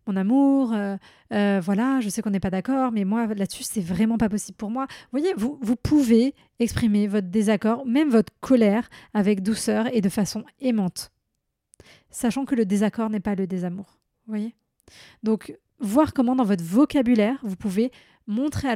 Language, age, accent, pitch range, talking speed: French, 20-39, French, 205-250 Hz, 180 wpm